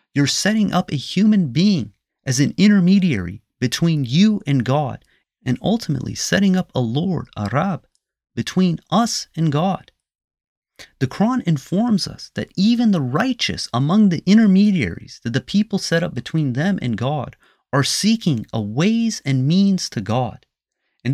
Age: 30-49